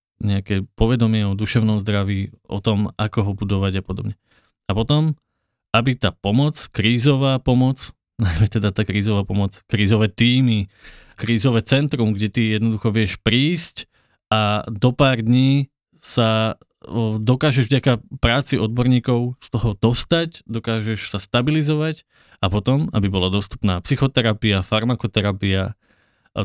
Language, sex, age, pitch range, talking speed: Slovak, male, 20-39, 100-125 Hz, 125 wpm